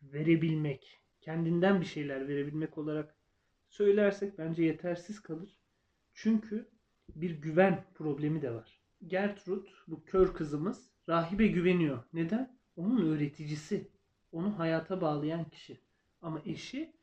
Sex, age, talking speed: male, 40-59, 110 wpm